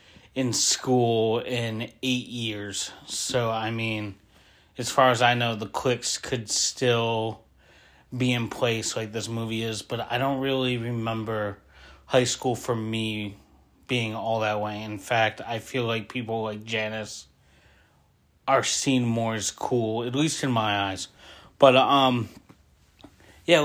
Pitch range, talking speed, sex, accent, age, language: 115-145 Hz, 145 wpm, male, American, 30-49, English